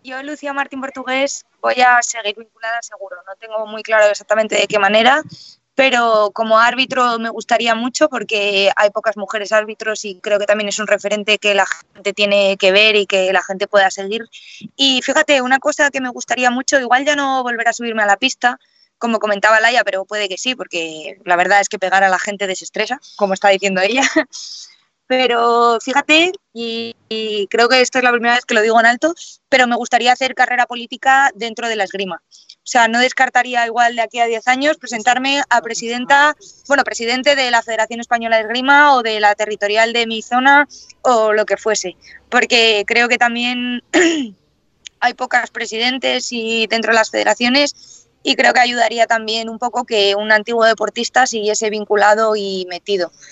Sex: female